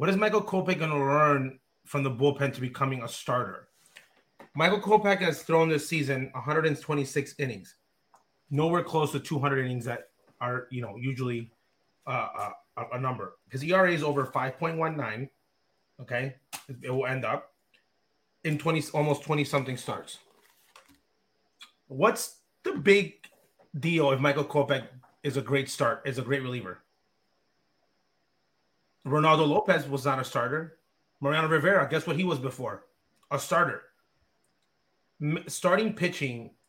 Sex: male